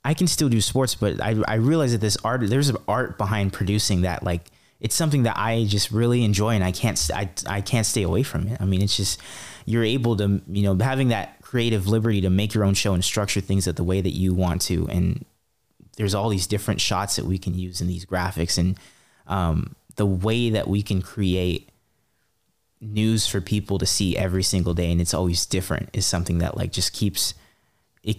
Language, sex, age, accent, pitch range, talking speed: English, male, 20-39, American, 95-110 Hz, 220 wpm